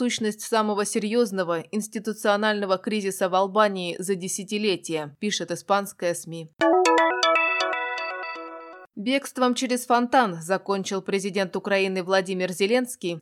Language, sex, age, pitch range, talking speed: Russian, female, 20-39, 175-210 Hz, 90 wpm